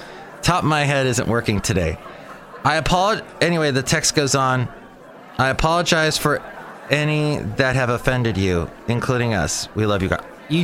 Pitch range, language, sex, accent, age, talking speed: 115-165 Hz, English, male, American, 30-49, 165 wpm